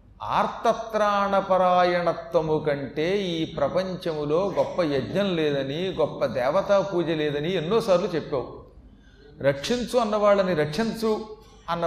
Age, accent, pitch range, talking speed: 40-59, native, 150-205 Hz, 90 wpm